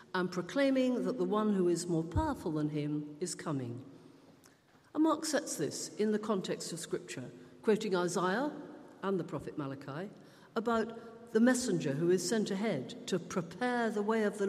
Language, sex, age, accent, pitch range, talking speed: English, female, 50-69, British, 155-235 Hz, 170 wpm